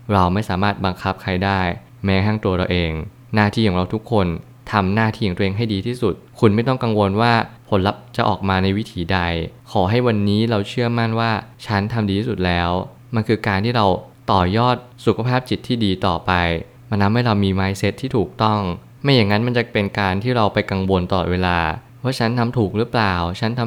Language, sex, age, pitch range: Thai, male, 20-39, 95-120 Hz